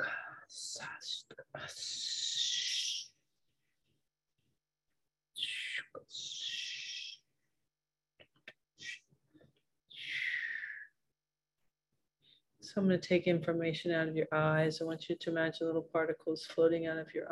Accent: American